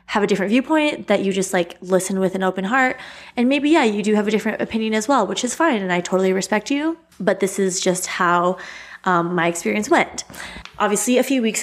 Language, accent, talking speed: English, American, 230 wpm